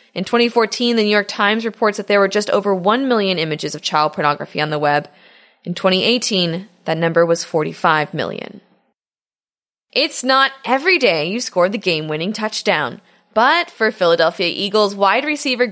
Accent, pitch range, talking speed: American, 180-255 Hz, 165 wpm